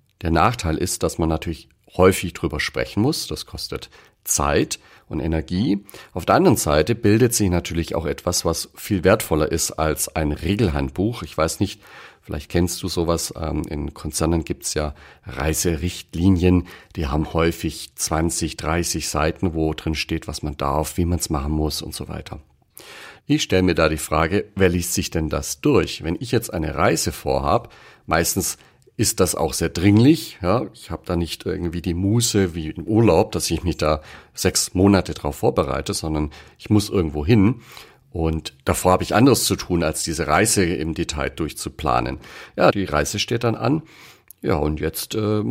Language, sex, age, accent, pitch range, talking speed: German, male, 40-59, German, 80-105 Hz, 180 wpm